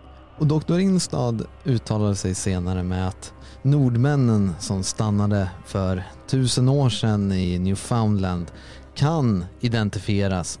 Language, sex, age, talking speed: Swedish, male, 30-49, 110 wpm